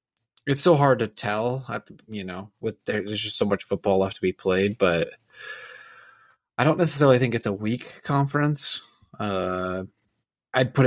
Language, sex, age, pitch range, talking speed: English, male, 20-39, 105-125 Hz, 175 wpm